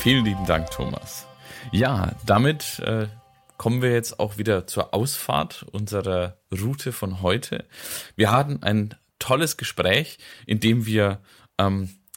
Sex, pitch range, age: male, 90-115 Hz, 30-49